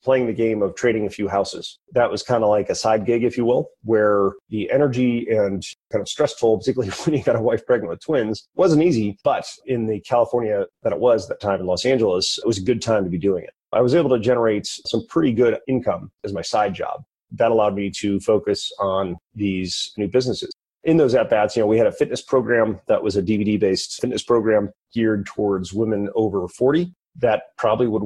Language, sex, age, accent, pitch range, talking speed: English, male, 30-49, American, 100-120 Hz, 220 wpm